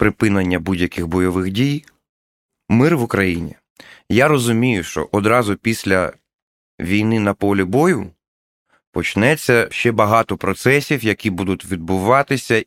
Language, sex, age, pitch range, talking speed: Ukrainian, male, 30-49, 90-115 Hz, 110 wpm